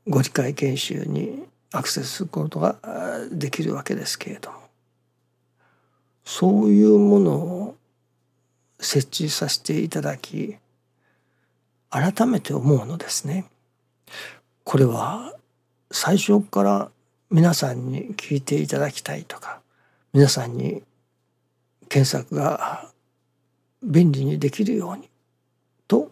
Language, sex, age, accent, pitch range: Japanese, male, 60-79, native, 135-190 Hz